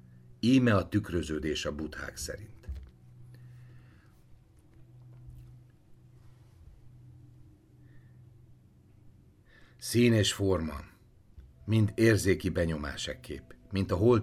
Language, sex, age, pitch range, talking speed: Hungarian, male, 60-79, 80-120 Hz, 70 wpm